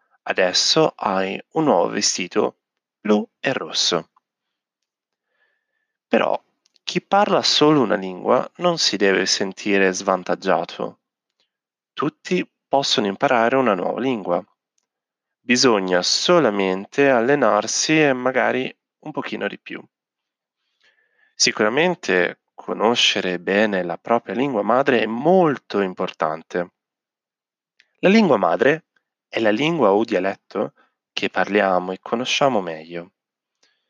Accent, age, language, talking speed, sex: native, 30-49, Italian, 100 wpm, male